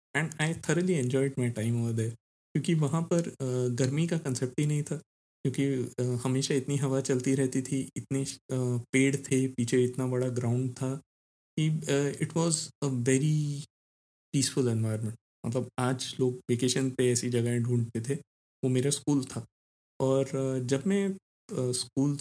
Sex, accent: male, native